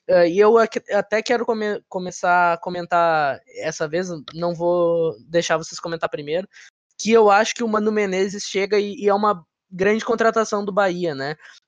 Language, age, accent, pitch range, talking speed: Portuguese, 20-39, Brazilian, 175-225 Hz, 175 wpm